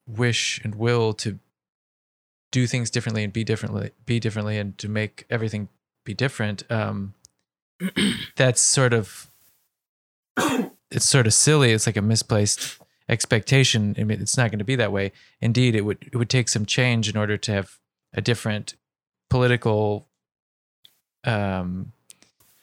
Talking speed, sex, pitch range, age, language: 150 wpm, male, 105-120 Hz, 20-39, English